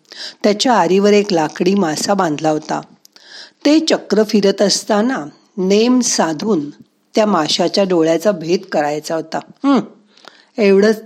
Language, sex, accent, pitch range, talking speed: Marathi, female, native, 175-230 Hz, 110 wpm